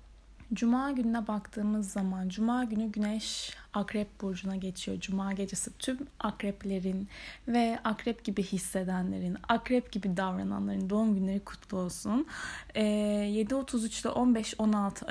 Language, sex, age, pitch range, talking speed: Turkish, female, 10-29, 190-225 Hz, 115 wpm